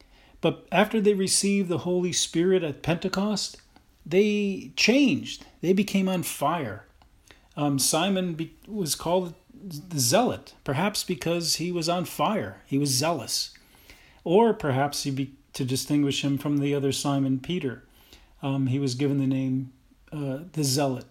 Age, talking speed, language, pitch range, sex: 40-59, 140 wpm, English, 135-170 Hz, male